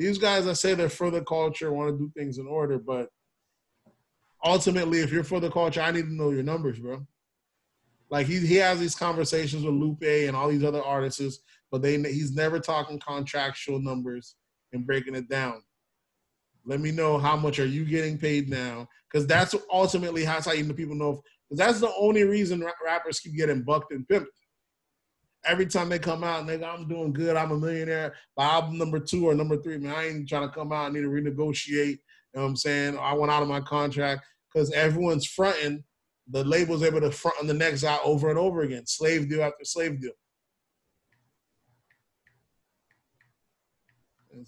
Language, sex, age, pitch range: English, male, 20-39, 140-165 Hz